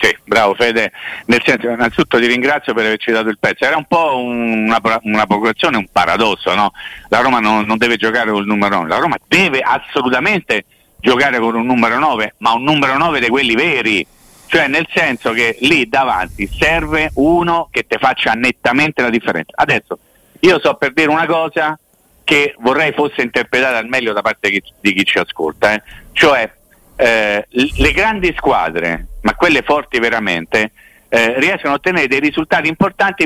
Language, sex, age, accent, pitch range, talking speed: Italian, male, 50-69, native, 115-170 Hz, 175 wpm